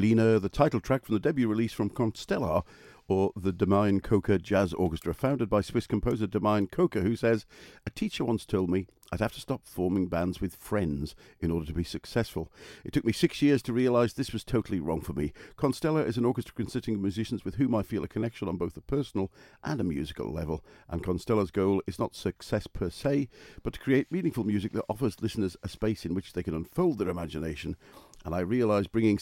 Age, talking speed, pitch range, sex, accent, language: 50-69, 215 wpm, 95-120 Hz, male, British, English